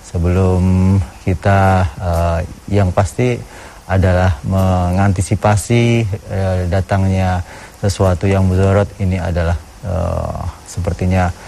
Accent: native